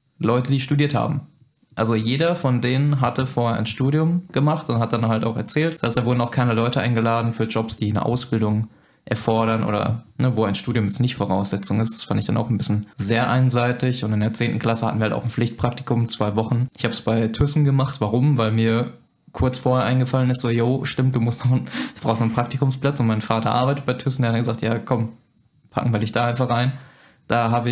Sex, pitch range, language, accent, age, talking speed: male, 115-140 Hz, German, German, 20-39, 225 wpm